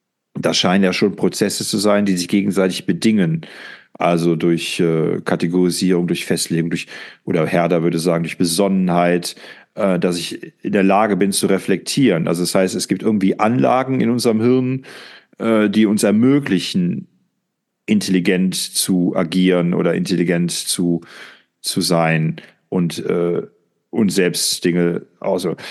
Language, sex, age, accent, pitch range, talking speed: German, male, 40-59, German, 90-115 Hz, 145 wpm